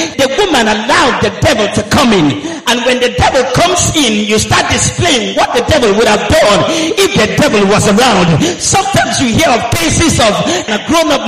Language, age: English, 50-69